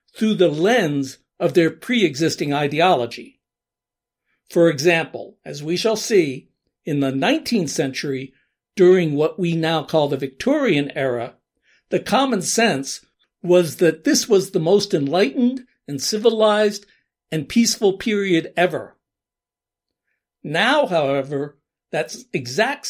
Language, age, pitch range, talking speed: English, 60-79, 155-210 Hz, 120 wpm